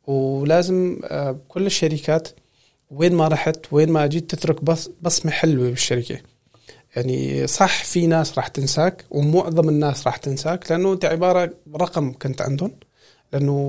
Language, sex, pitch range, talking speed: Arabic, male, 140-175 Hz, 135 wpm